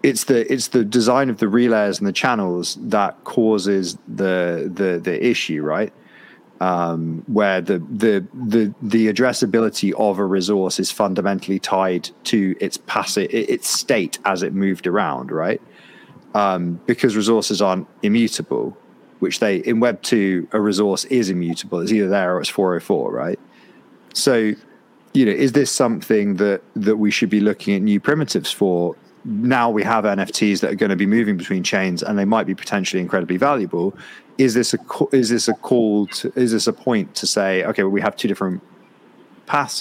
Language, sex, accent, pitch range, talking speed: English, male, British, 95-115 Hz, 180 wpm